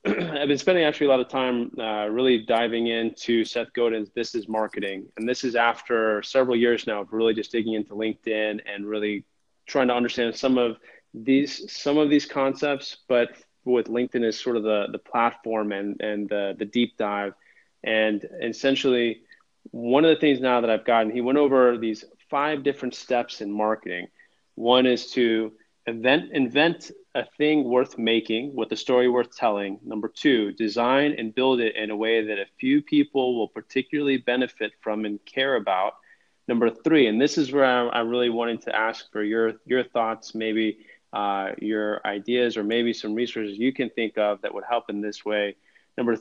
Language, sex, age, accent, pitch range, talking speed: English, male, 20-39, American, 110-130 Hz, 190 wpm